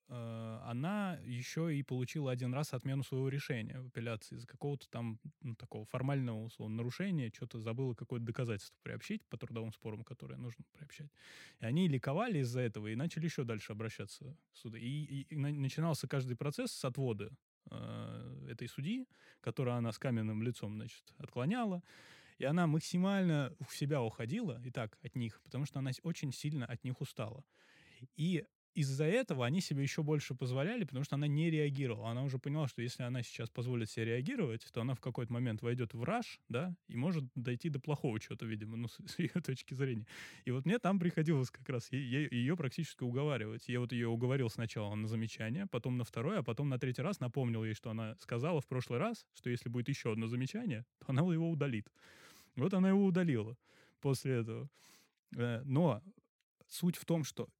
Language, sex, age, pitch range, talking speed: Russian, male, 20-39, 120-155 Hz, 185 wpm